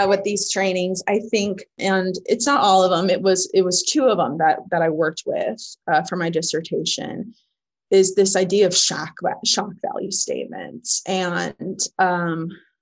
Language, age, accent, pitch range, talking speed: English, 20-39, American, 175-220 Hz, 175 wpm